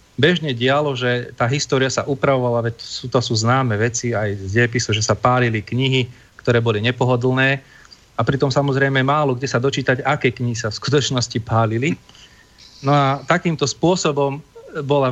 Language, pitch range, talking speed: Slovak, 115-140 Hz, 155 wpm